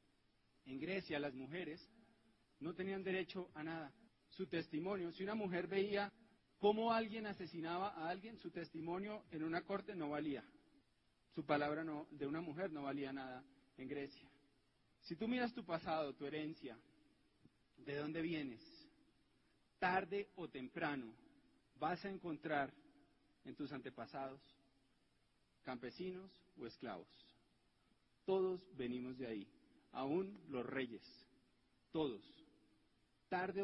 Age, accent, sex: 40-59, Colombian, male